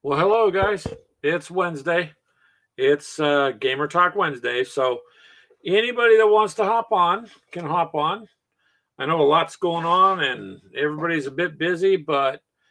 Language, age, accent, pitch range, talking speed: English, 50-69, American, 150-195 Hz, 150 wpm